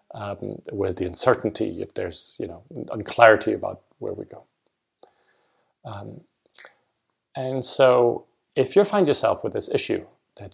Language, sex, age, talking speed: English, male, 30-49, 135 wpm